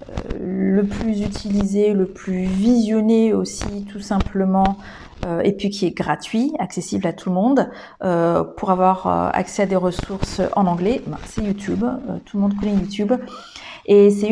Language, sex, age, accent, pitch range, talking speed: French, female, 40-59, French, 190-240 Hz, 170 wpm